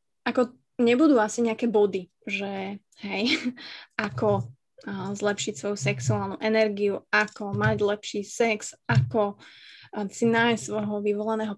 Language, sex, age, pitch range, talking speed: Slovak, female, 20-39, 210-240 Hz, 110 wpm